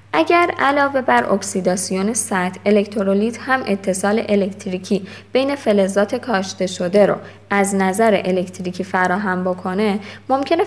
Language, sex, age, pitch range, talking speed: Persian, female, 20-39, 185-230 Hz, 115 wpm